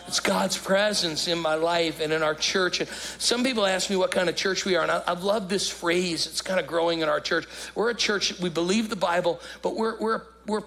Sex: male